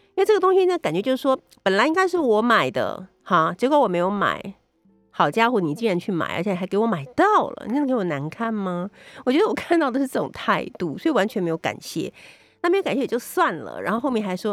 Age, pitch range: 50-69, 170-265 Hz